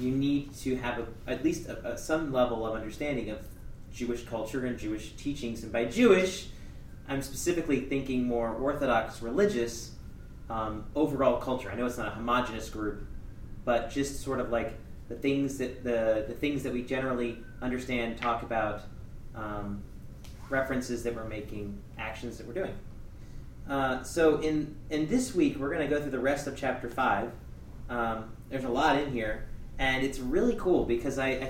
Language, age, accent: English, 30-49, American